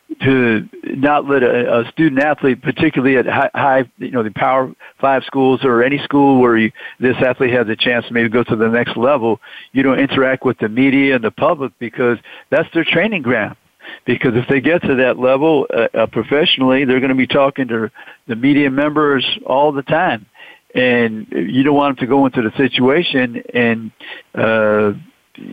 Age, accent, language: 60-79, American, English